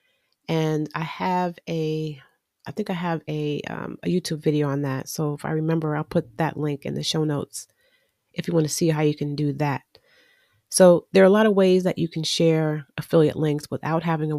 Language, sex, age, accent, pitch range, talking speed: English, female, 30-49, American, 150-175 Hz, 220 wpm